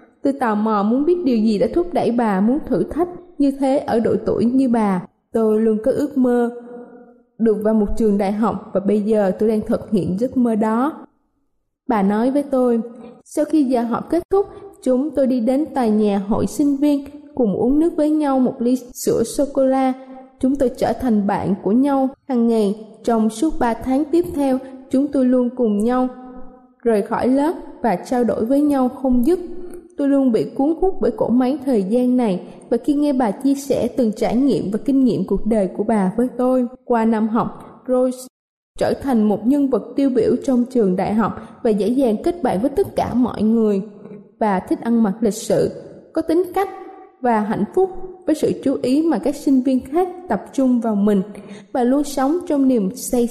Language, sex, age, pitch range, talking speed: Vietnamese, female, 20-39, 220-280 Hz, 210 wpm